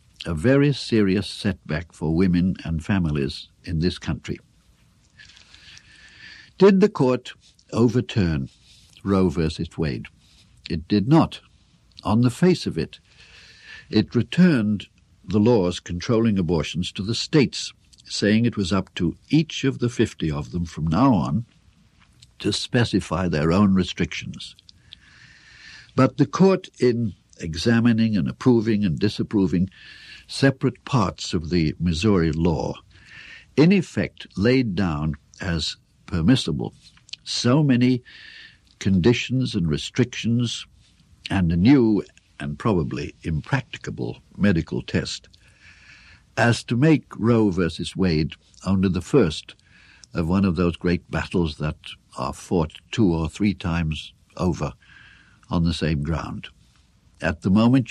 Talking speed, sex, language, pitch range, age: 120 wpm, male, English, 85-120 Hz, 60-79